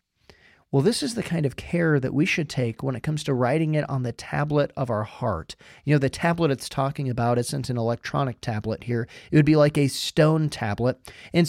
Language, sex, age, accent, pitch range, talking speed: English, male, 30-49, American, 125-170 Hz, 225 wpm